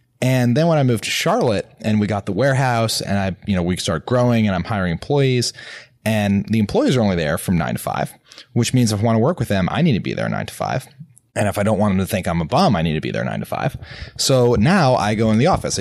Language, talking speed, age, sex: English, 290 wpm, 20-39, male